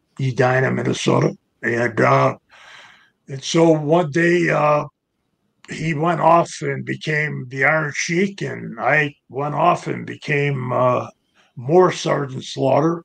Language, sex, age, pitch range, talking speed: English, male, 50-69, 125-155 Hz, 135 wpm